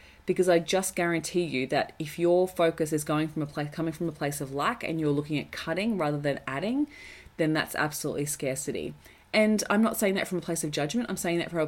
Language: English